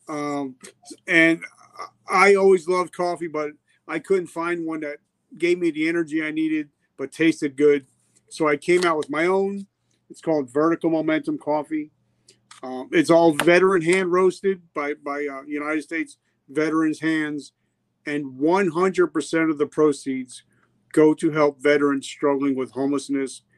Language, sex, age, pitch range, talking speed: English, male, 40-59, 150-185 Hz, 150 wpm